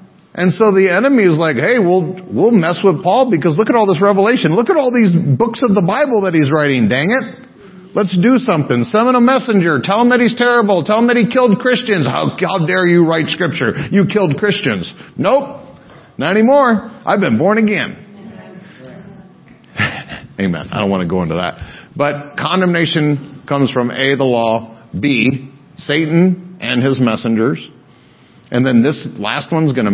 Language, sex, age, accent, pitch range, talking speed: English, male, 50-69, American, 125-200 Hz, 185 wpm